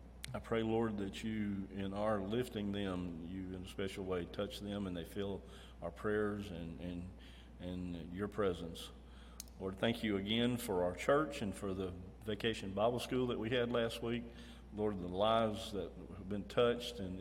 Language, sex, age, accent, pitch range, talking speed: English, male, 40-59, American, 90-110 Hz, 180 wpm